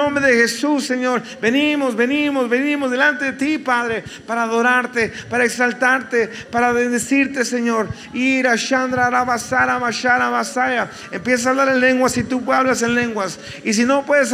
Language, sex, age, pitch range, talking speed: Spanish, male, 40-59, 245-270 Hz, 140 wpm